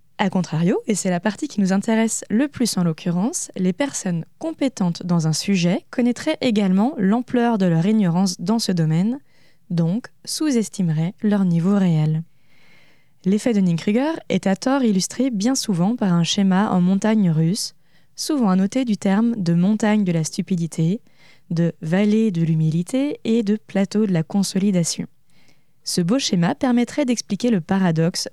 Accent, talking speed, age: French, 155 wpm, 20-39